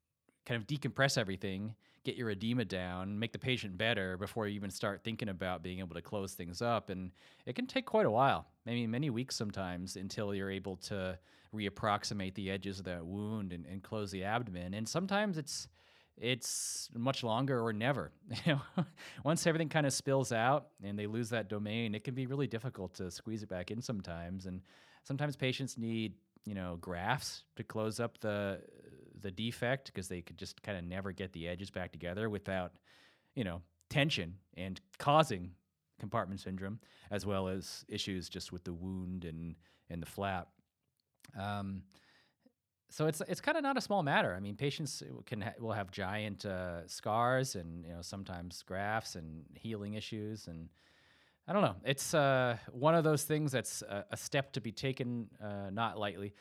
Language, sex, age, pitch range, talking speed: English, male, 30-49, 95-125 Hz, 185 wpm